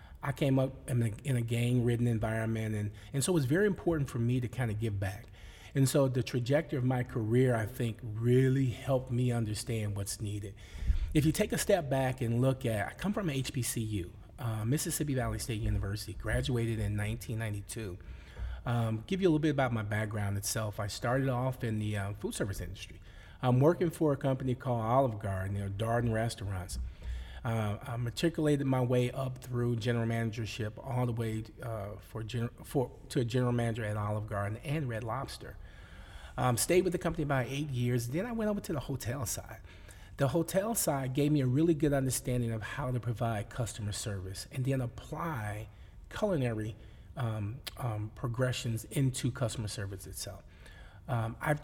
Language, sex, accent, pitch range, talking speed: English, male, American, 105-130 Hz, 180 wpm